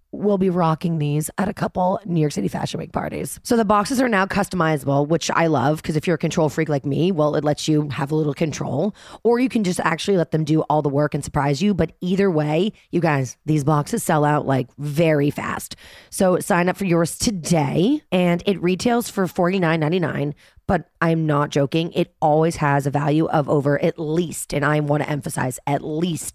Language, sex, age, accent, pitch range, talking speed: English, female, 30-49, American, 150-190 Hz, 215 wpm